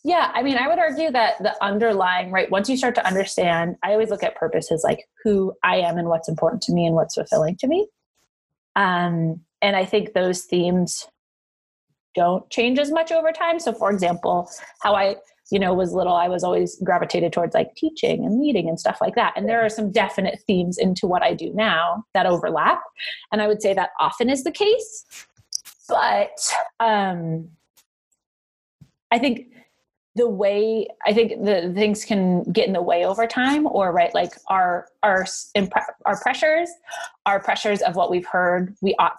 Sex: female